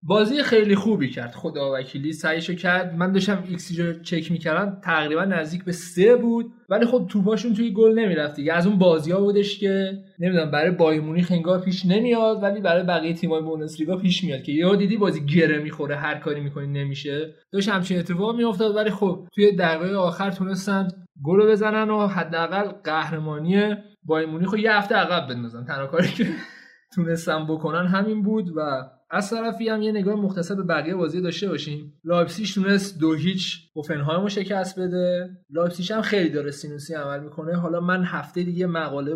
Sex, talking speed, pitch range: male, 165 wpm, 145-190 Hz